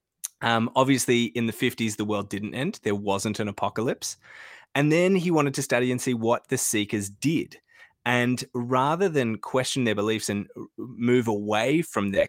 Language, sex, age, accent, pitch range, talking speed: English, male, 20-39, Australian, 105-130 Hz, 175 wpm